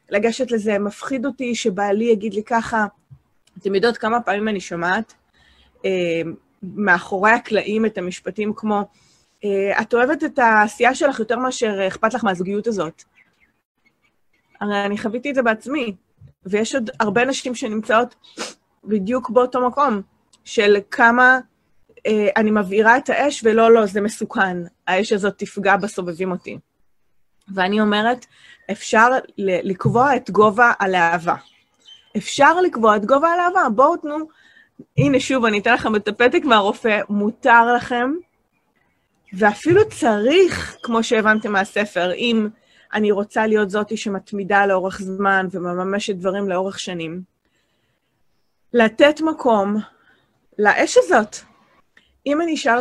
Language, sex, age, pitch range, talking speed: English, female, 20-39, 200-245 Hz, 125 wpm